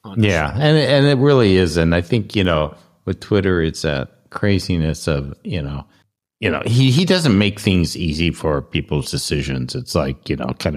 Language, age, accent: English, 60-79, American